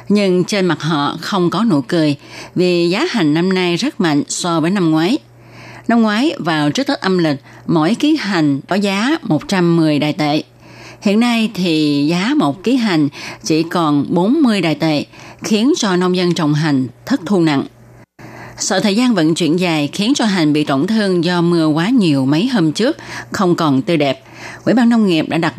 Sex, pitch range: female, 150-205 Hz